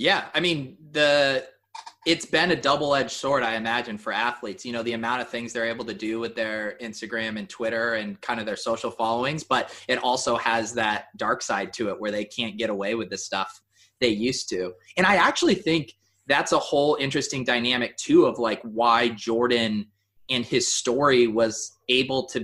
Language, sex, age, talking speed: English, male, 20-39, 200 wpm